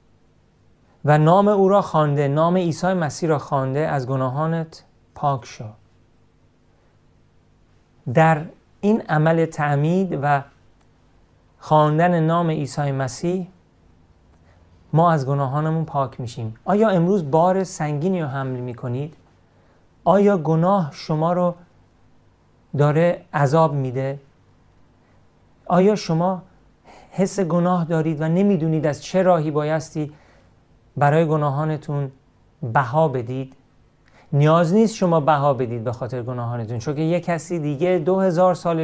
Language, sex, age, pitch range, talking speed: Persian, male, 40-59, 120-165 Hz, 110 wpm